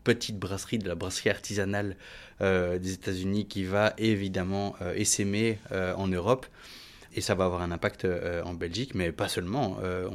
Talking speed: 185 wpm